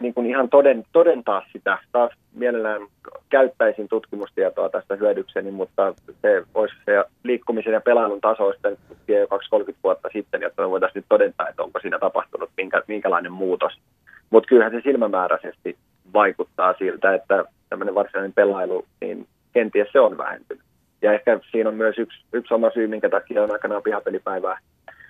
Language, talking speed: Finnish, 155 wpm